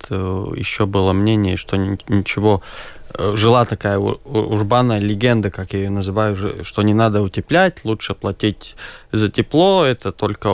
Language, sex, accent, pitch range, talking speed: Russian, male, native, 105-130 Hz, 130 wpm